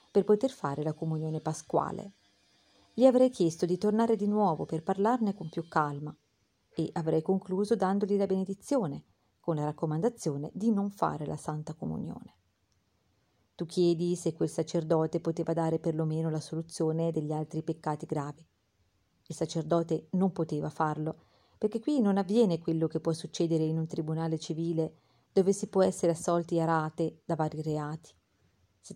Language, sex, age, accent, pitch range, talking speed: Italian, female, 40-59, native, 155-185 Hz, 155 wpm